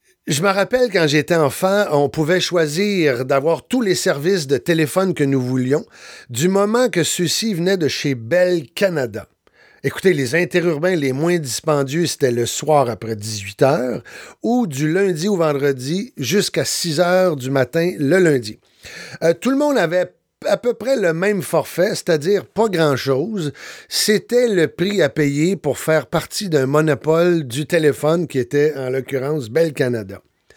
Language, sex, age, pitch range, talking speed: French, male, 50-69, 145-190 Hz, 160 wpm